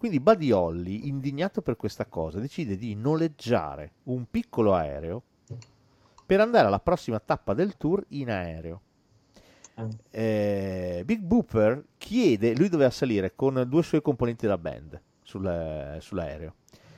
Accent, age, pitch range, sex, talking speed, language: native, 40-59, 95-155 Hz, male, 135 wpm, Italian